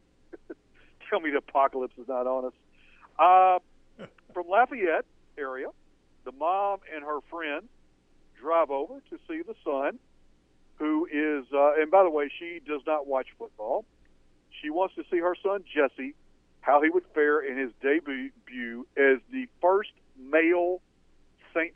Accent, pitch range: American, 120-170 Hz